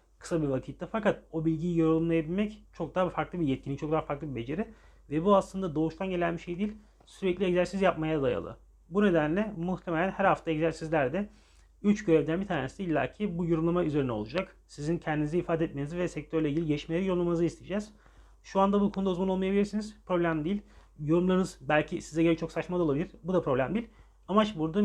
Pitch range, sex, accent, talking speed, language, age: 155-195 Hz, male, native, 180 wpm, Turkish, 40-59